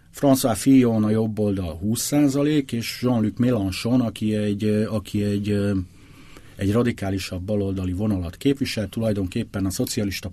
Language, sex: Hungarian, male